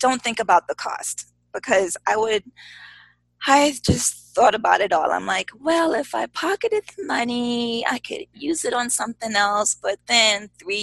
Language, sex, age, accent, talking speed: English, female, 20-39, American, 175 wpm